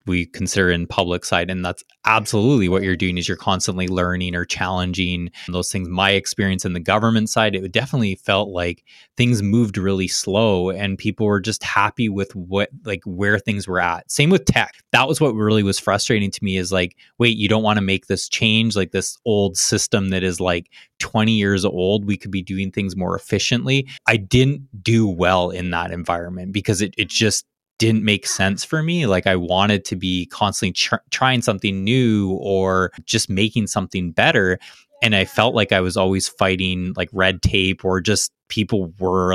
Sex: male